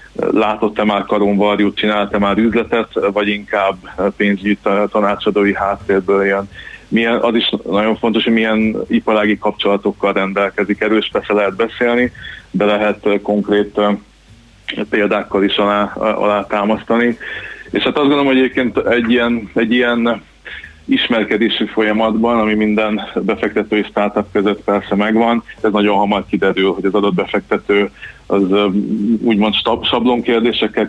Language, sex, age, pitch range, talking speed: Hungarian, male, 20-39, 100-110 Hz, 125 wpm